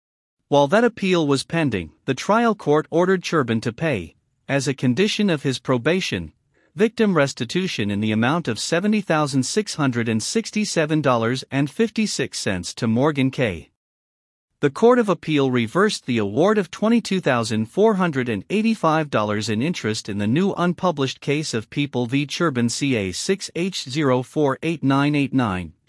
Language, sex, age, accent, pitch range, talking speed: English, male, 50-69, American, 120-180 Hz, 120 wpm